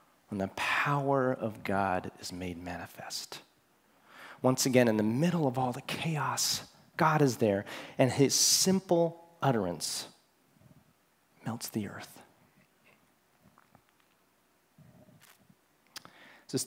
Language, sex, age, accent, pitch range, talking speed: English, male, 30-49, American, 100-135 Hz, 100 wpm